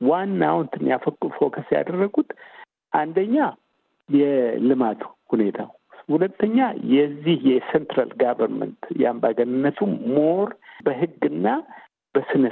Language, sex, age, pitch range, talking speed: Amharic, male, 60-79, 125-215 Hz, 75 wpm